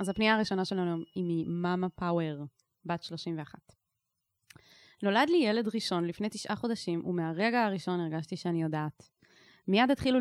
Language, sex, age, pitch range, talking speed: Hebrew, female, 20-39, 180-225 Hz, 135 wpm